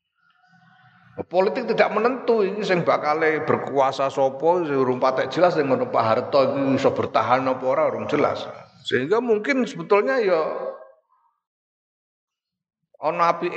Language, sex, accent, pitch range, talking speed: Indonesian, male, native, 120-205 Hz, 95 wpm